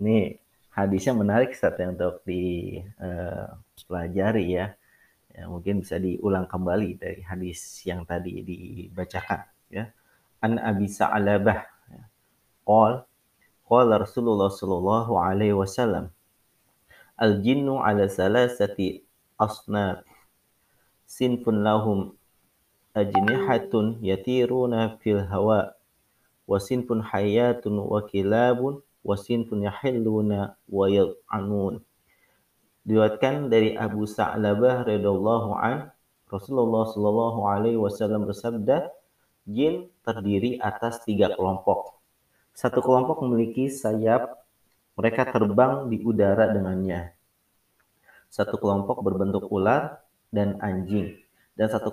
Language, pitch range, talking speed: Indonesian, 95-115 Hz, 85 wpm